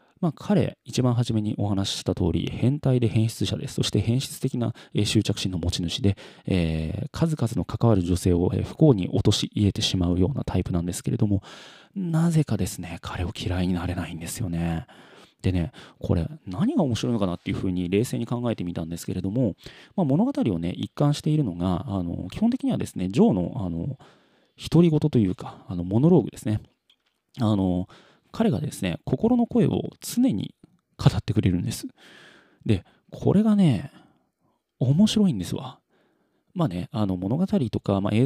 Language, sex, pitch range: Japanese, male, 95-130 Hz